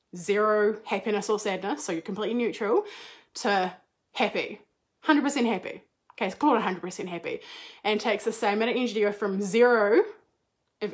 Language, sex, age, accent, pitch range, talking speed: English, female, 20-39, Australian, 205-280 Hz, 165 wpm